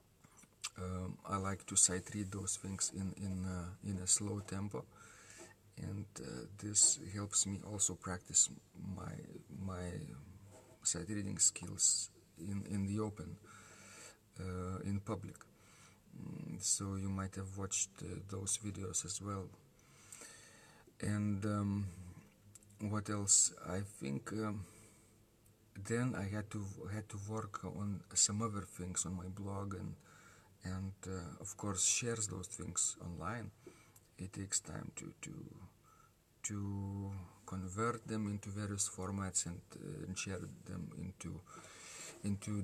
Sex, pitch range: male, 95-105 Hz